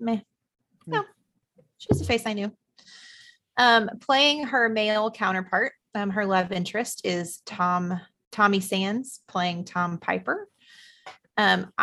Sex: female